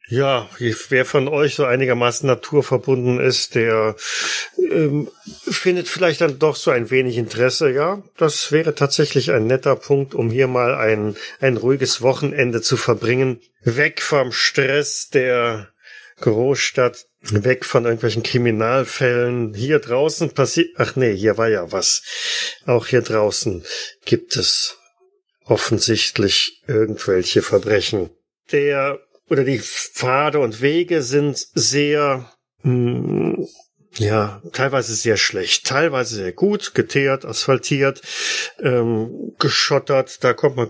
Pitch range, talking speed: 120-145 Hz, 120 wpm